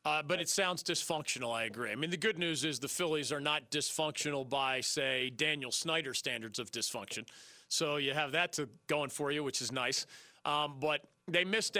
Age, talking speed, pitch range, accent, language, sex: 40-59, 205 wpm, 135-170 Hz, American, English, male